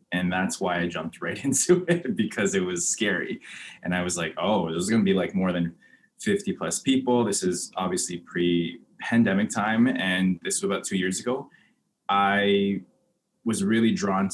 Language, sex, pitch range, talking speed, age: English, male, 85-115 Hz, 180 wpm, 20-39